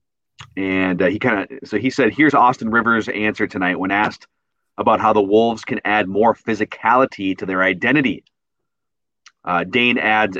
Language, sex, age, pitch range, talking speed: English, male, 30-49, 105-135 Hz, 165 wpm